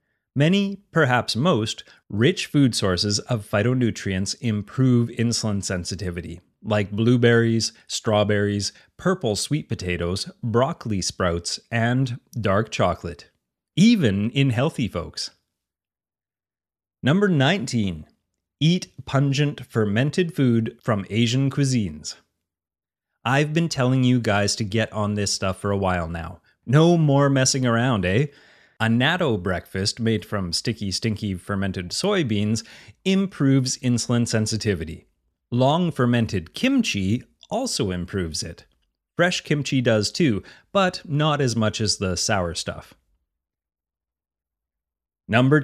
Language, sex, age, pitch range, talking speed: English, male, 30-49, 95-135 Hz, 110 wpm